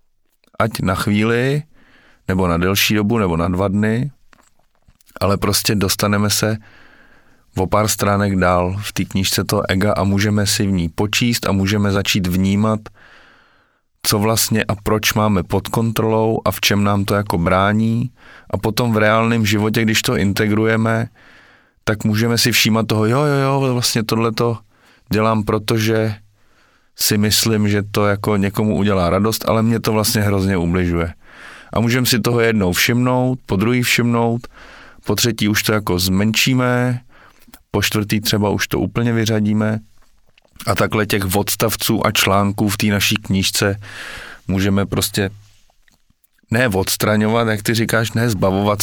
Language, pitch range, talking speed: Czech, 100-115 Hz, 150 wpm